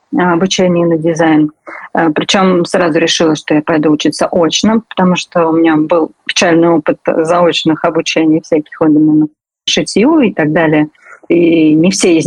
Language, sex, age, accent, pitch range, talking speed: Russian, female, 30-49, native, 160-190 Hz, 150 wpm